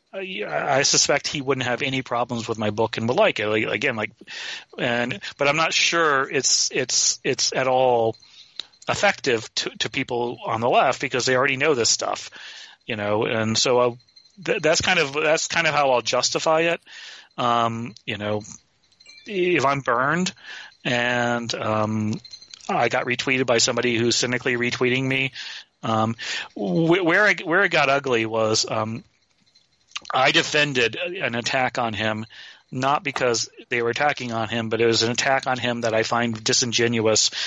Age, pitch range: 30-49, 115-145 Hz